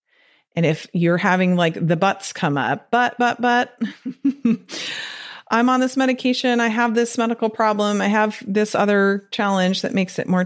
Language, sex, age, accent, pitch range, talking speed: English, female, 30-49, American, 170-230 Hz, 170 wpm